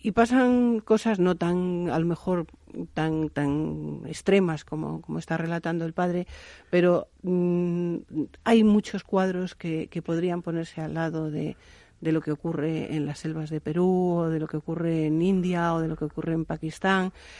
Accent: Spanish